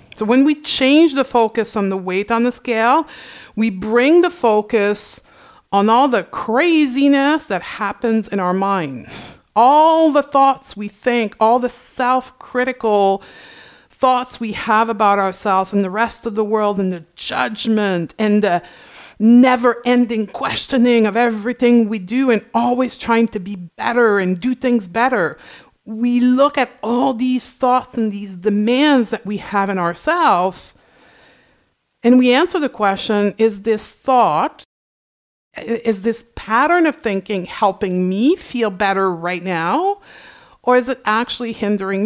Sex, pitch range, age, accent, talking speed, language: female, 205-250 Hz, 50-69, American, 145 wpm, English